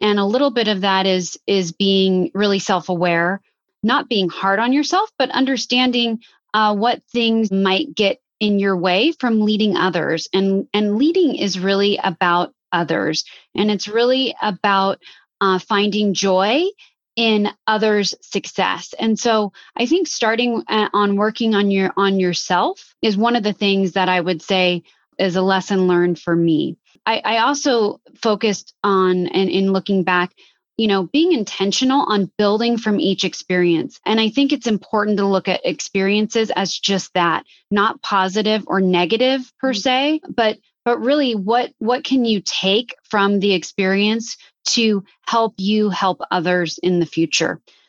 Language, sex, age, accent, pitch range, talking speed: English, female, 30-49, American, 190-230 Hz, 160 wpm